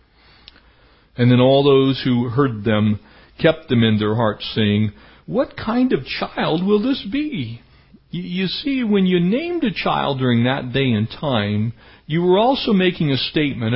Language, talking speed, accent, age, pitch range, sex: English, 165 wpm, American, 60-79, 115-180 Hz, male